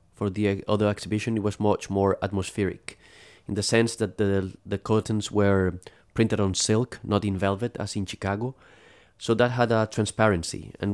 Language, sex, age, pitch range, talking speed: English, male, 30-49, 95-105 Hz, 175 wpm